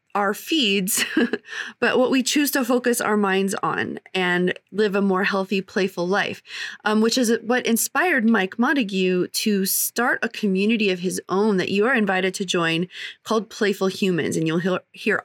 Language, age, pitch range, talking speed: English, 30-49, 190-235 Hz, 175 wpm